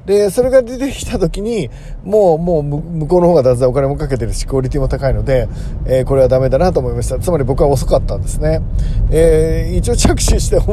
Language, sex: Japanese, male